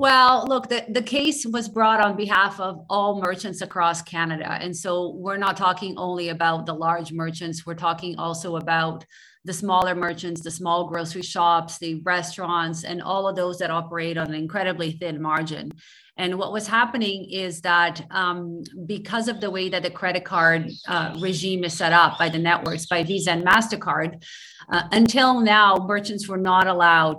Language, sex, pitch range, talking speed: English, female, 165-195 Hz, 180 wpm